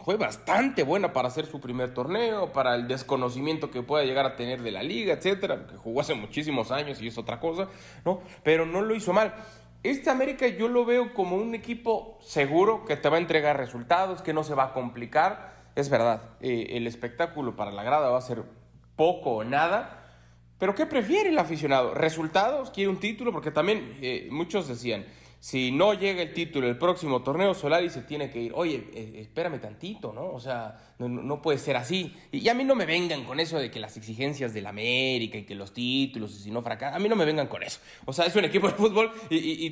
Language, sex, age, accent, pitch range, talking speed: Spanish, male, 30-49, Mexican, 120-185 Hz, 220 wpm